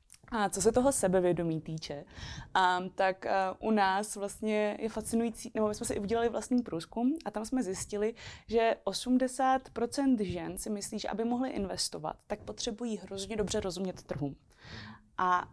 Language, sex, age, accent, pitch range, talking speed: Czech, female, 20-39, native, 195-230 Hz, 160 wpm